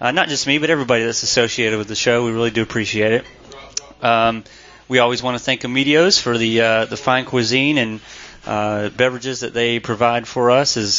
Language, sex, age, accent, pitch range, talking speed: English, male, 30-49, American, 115-130 Hz, 210 wpm